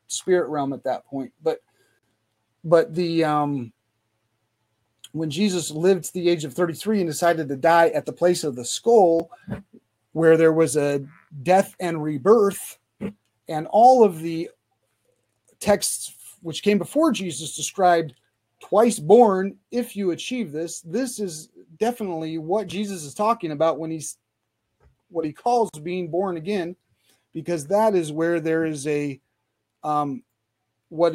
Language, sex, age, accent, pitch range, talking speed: English, male, 30-49, American, 145-190 Hz, 145 wpm